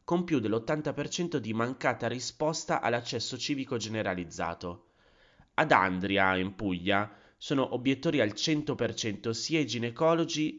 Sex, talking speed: male, 115 wpm